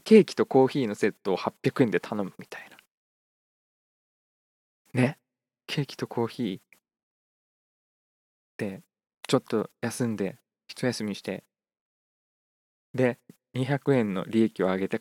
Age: 20-39